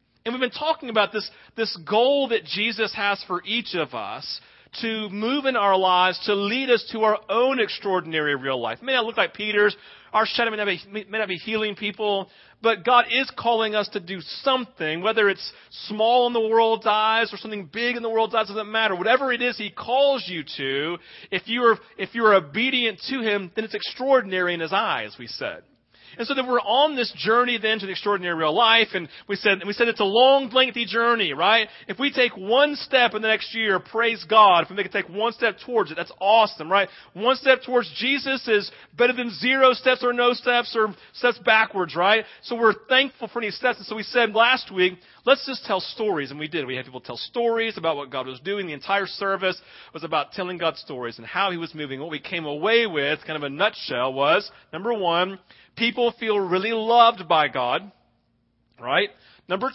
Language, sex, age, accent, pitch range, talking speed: English, male, 40-59, American, 190-235 Hz, 215 wpm